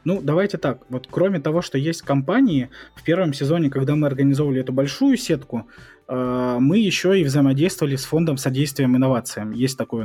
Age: 20-39